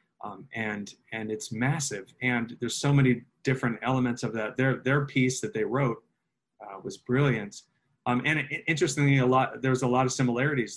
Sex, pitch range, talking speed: male, 105-130 Hz, 180 wpm